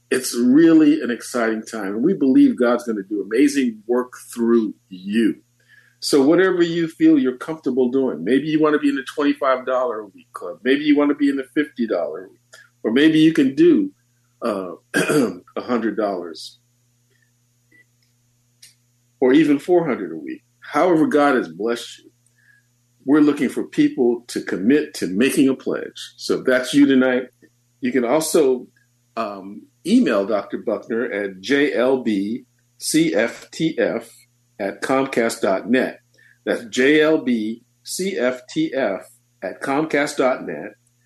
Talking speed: 135 wpm